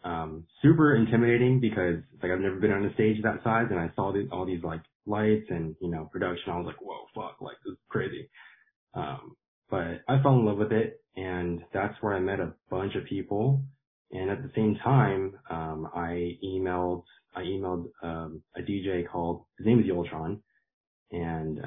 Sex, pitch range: male, 85-110 Hz